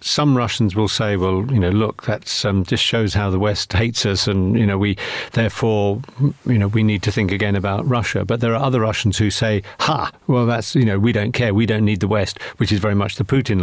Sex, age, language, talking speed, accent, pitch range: male, 50-69, English, 250 wpm, British, 100-130 Hz